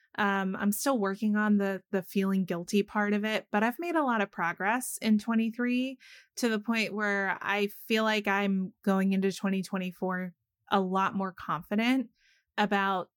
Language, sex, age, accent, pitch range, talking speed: English, female, 20-39, American, 190-230 Hz, 170 wpm